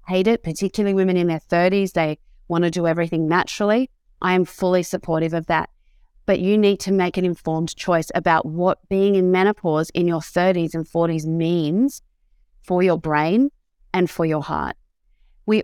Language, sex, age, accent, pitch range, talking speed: English, female, 30-49, Australian, 160-195 Hz, 175 wpm